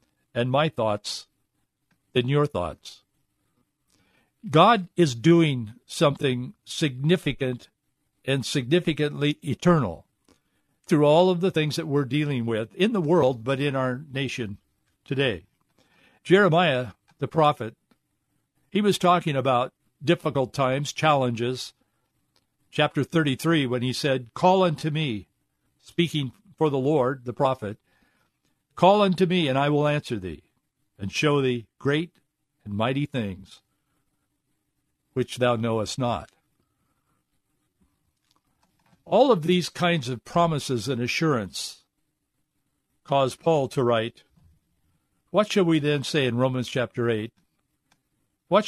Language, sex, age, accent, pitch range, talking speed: English, male, 60-79, American, 125-160 Hz, 120 wpm